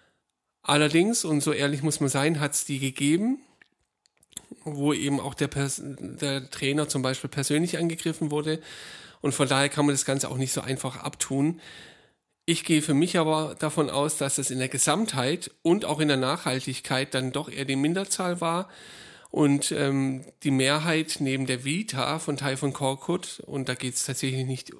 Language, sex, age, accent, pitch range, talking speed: German, male, 10-29, German, 135-155 Hz, 180 wpm